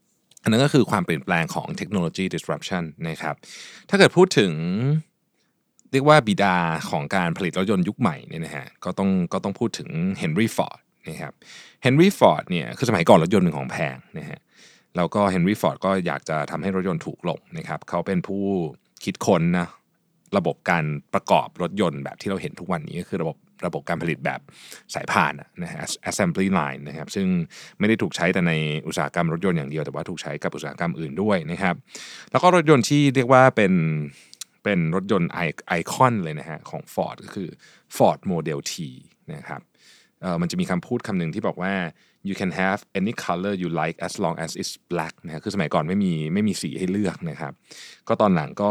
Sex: male